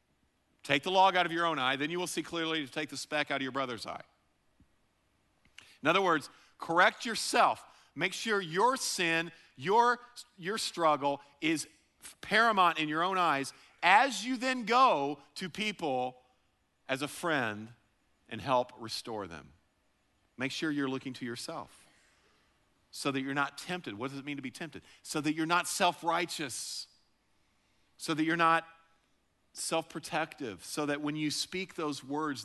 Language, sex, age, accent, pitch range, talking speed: English, male, 50-69, American, 125-160 Hz, 165 wpm